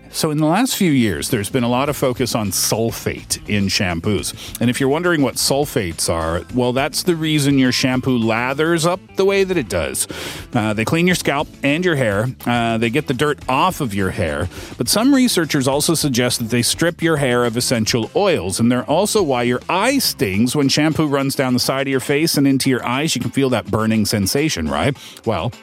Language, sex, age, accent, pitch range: Korean, male, 40-59, American, 120-160 Hz